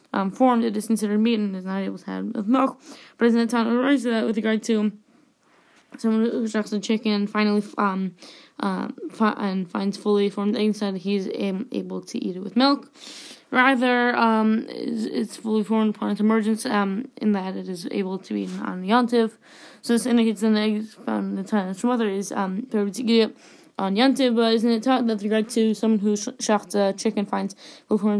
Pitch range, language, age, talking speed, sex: 195-245 Hz, English, 10-29, 220 wpm, female